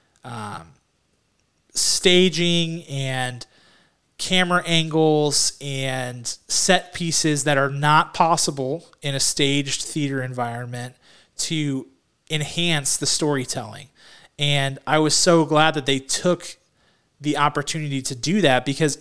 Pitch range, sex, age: 135-160 Hz, male, 30-49